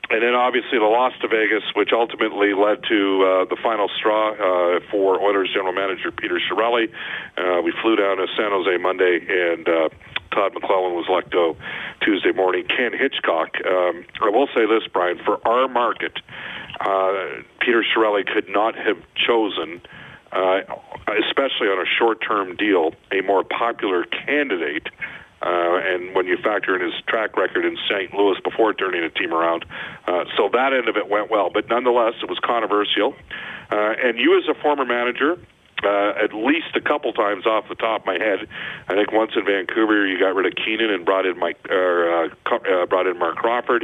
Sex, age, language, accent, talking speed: male, 50-69, English, American, 190 wpm